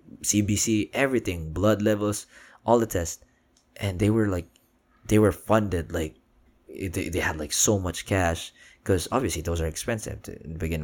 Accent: native